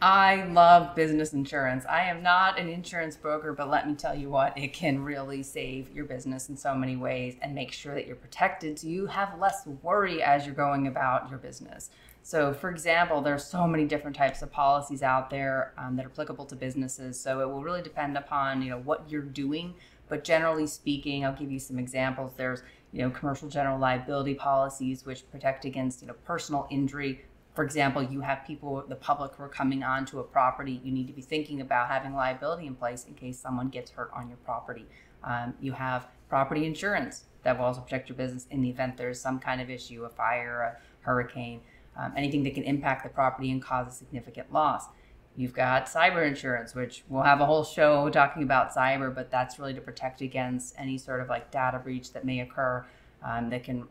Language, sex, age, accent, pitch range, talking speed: English, female, 30-49, American, 130-145 Hz, 215 wpm